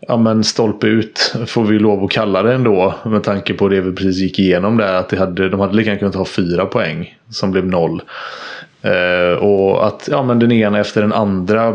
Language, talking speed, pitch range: English, 215 wpm, 100-115 Hz